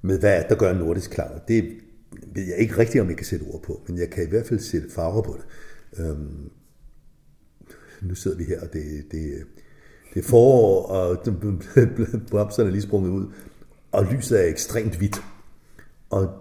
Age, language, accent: 60-79, Danish, native